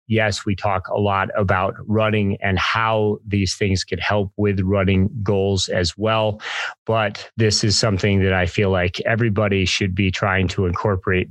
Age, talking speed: 30-49, 170 wpm